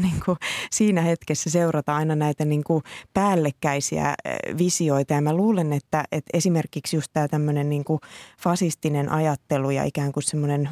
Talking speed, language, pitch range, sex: 135 wpm, Finnish, 145-170 Hz, female